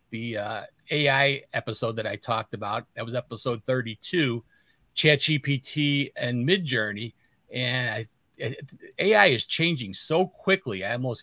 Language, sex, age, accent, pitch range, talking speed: English, male, 40-59, American, 115-145 Hz, 145 wpm